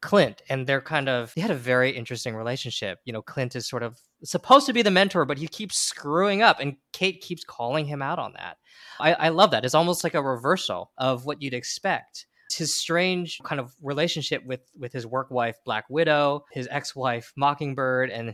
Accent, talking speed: American, 210 wpm